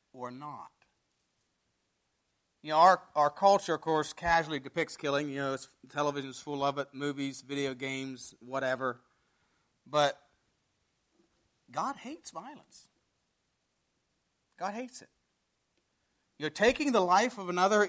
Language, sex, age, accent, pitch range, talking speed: English, male, 40-59, American, 125-165 Hz, 125 wpm